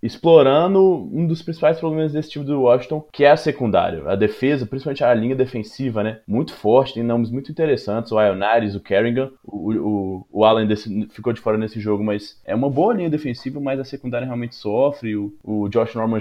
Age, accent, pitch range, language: 20-39, Brazilian, 110-135 Hz, Portuguese